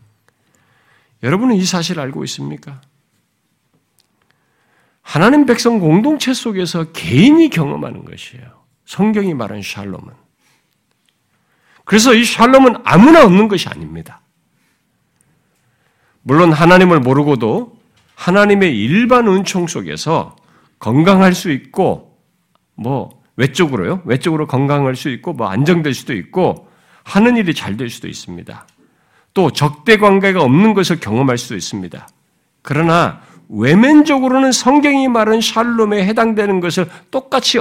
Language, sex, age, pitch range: Korean, male, 50-69, 135-210 Hz